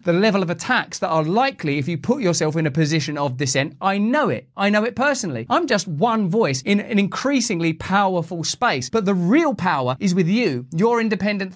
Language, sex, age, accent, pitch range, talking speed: English, male, 30-49, British, 155-215 Hz, 215 wpm